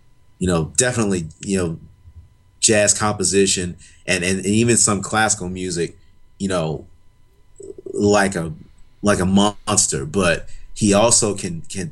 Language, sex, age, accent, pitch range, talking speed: English, male, 30-49, American, 90-105 Hz, 130 wpm